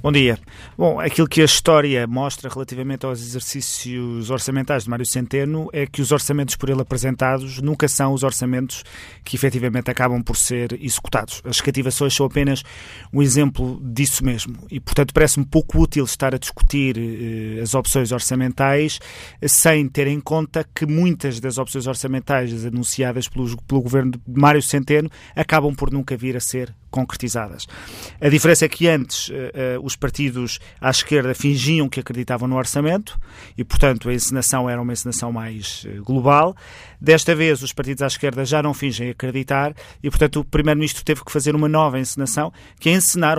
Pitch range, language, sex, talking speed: 125-145 Hz, Portuguese, male, 170 wpm